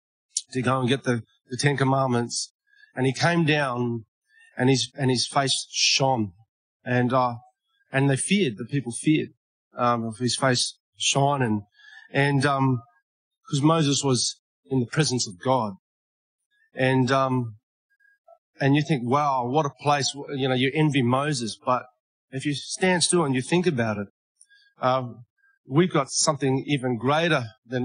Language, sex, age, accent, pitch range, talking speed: English, male, 30-49, Australian, 120-155 Hz, 155 wpm